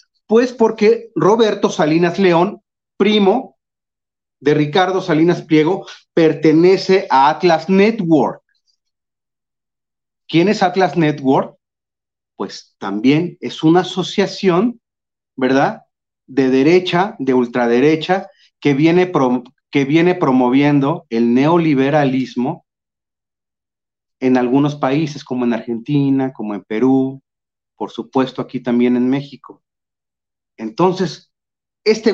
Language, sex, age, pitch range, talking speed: Spanish, male, 40-59, 135-190 Hz, 95 wpm